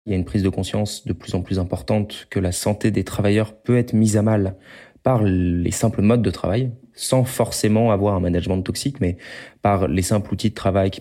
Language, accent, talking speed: French, French, 230 wpm